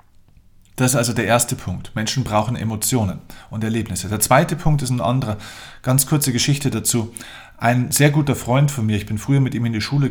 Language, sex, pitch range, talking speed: German, male, 105-130 Hz, 210 wpm